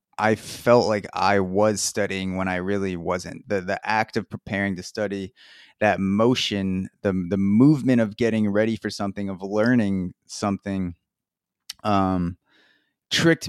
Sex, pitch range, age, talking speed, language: male, 100-115 Hz, 20-39, 140 wpm, English